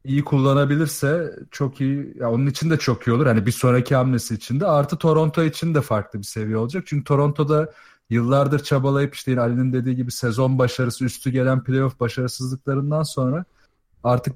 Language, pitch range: Turkish, 120-145 Hz